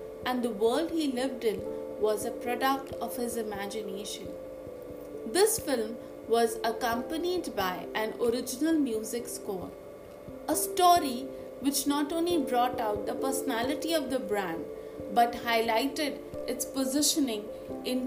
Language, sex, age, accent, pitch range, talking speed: English, female, 50-69, Indian, 220-310 Hz, 125 wpm